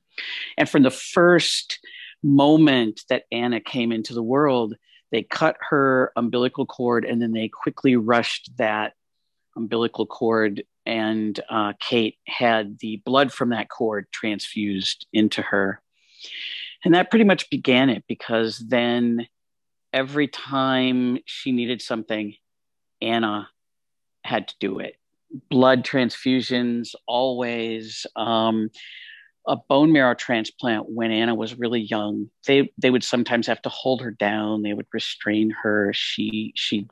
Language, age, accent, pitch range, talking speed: English, 50-69, American, 110-130 Hz, 135 wpm